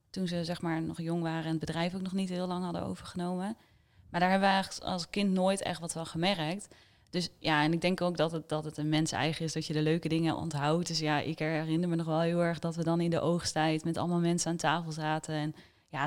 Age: 20-39